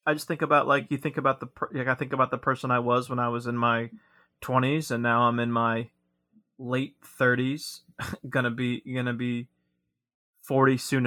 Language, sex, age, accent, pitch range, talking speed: English, male, 20-39, American, 115-135 Hz, 200 wpm